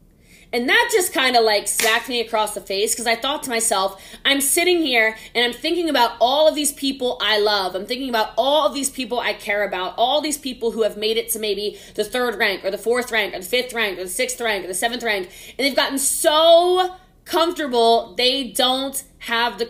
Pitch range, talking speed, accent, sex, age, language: 210-280 Hz, 230 wpm, American, female, 20-39, English